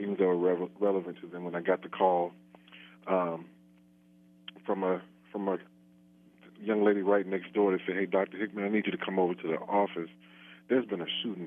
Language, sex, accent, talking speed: English, male, American, 200 wpm